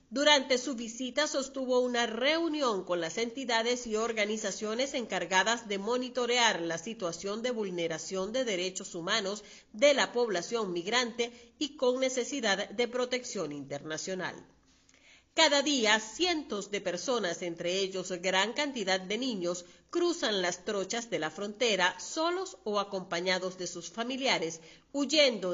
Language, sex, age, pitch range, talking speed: Spanish, female, 40-59, 180-250 Hz, 130 wpm